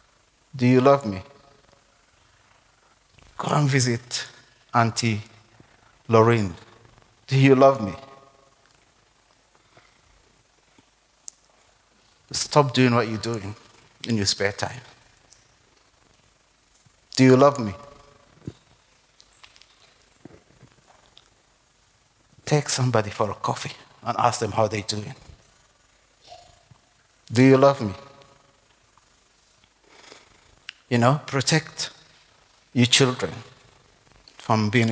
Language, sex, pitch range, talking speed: English, male, 110-135 Hz, 80 wpm